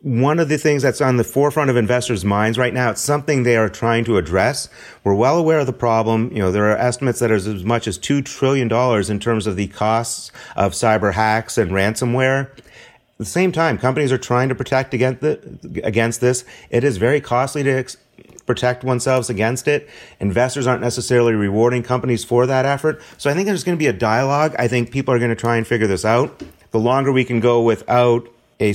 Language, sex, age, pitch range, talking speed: English, male, 30-49, 110-130 Hz, 215 wpm